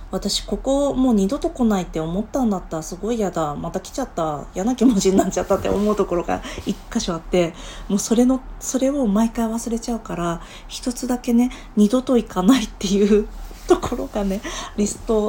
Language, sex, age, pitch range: Japanese, female, 40-59, 180-245 Hz